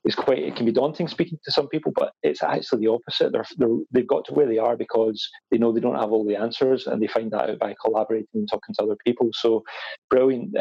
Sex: male